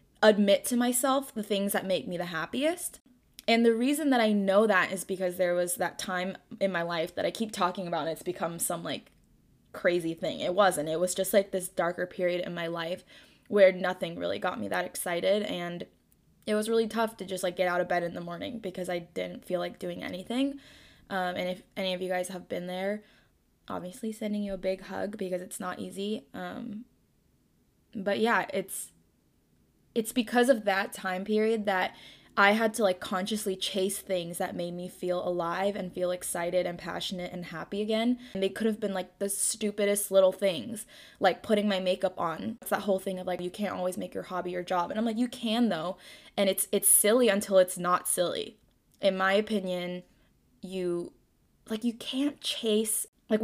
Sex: female